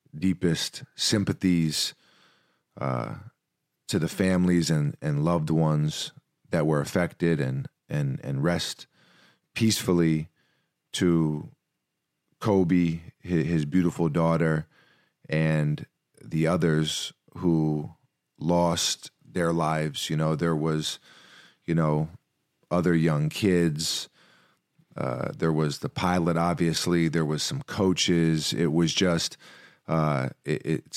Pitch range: 80-90 Hz